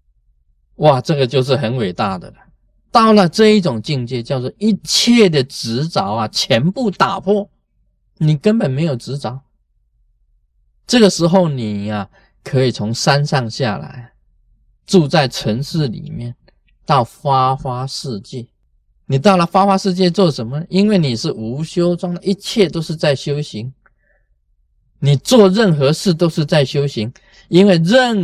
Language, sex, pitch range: Chinese, male, 125-190 Hz